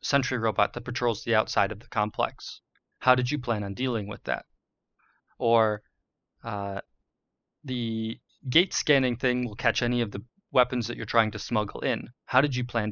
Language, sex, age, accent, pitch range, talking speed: English, male, 20-39, American, 110-130 Hz, 180 wpm